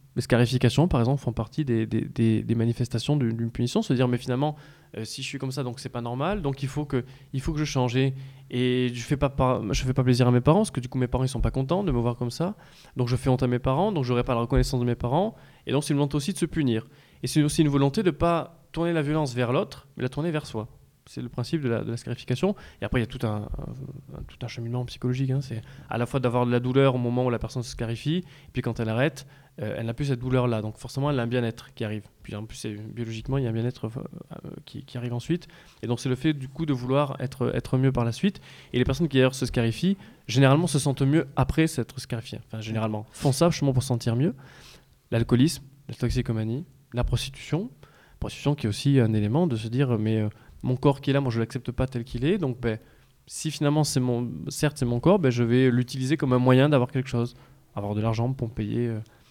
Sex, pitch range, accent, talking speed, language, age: male, 120-145 Hz, French, 275 wpm, French, 20-39